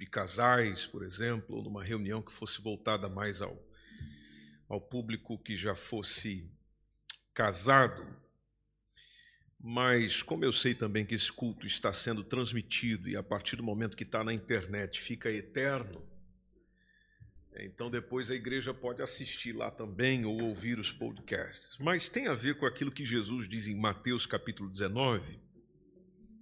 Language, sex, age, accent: Portuguese, male, 50-69, Brazilian